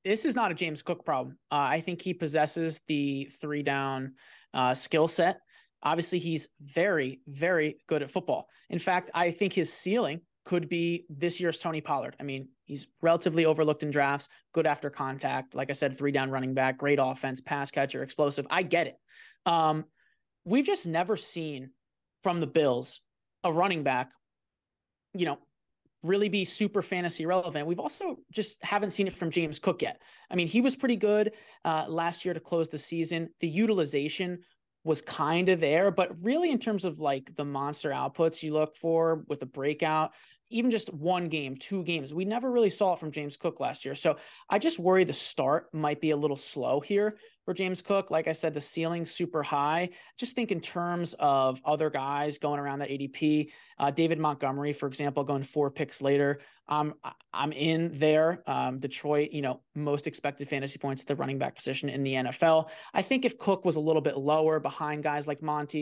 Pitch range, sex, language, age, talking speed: 145-175 Hz, male, English, 20-39, 195 wpm